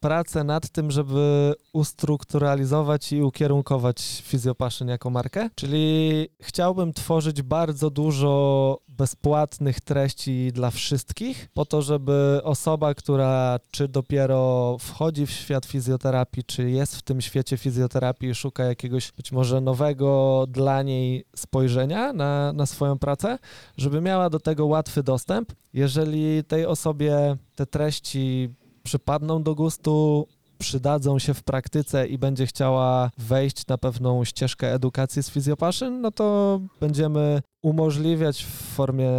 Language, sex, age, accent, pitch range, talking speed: Polish, male, 20-39, native, 130-150 Hz, 125 wpm